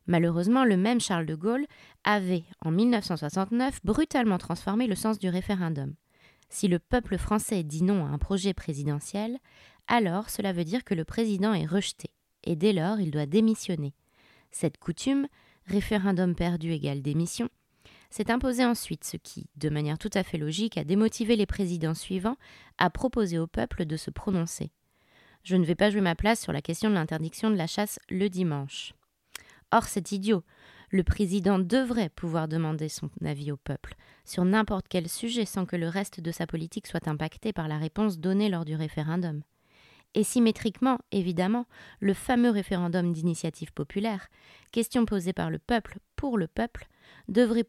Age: 20-39